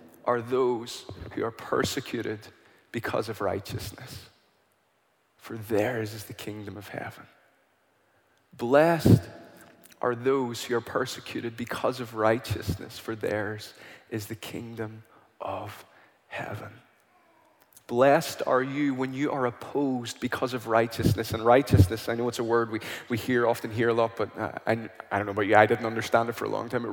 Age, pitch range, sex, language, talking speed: 20-39, 110-145 Hz, male, English, 160 wpm